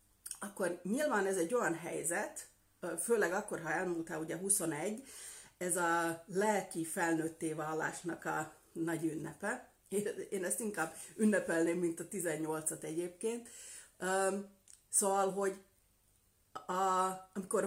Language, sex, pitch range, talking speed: Hungarian, female, 165-205 Hz, 105 wpm